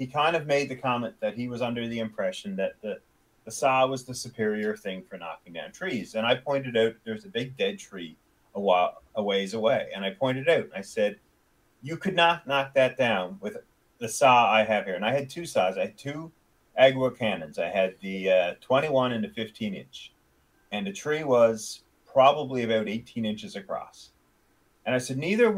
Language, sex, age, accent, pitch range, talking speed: English, male, 30-49, American, 110-150 Hz, 205 wpm